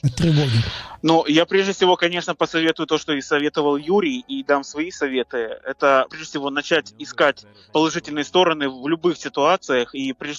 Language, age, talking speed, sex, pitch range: Russian, 20-39, 155 wpm, male, 140-170 Hz